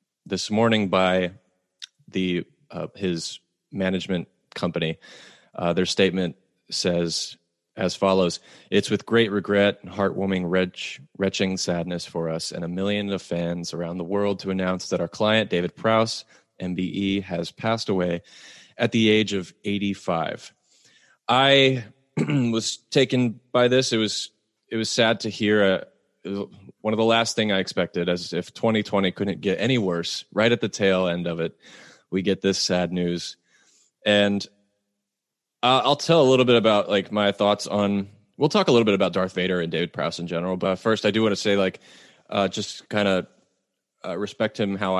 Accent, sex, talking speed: American, male, 170 wpm